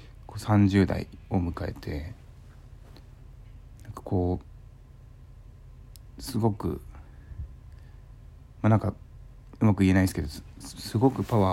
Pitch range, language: 85-110 Hz, Japanese